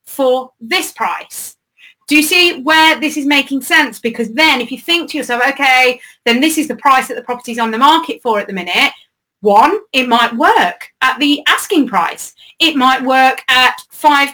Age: 30-49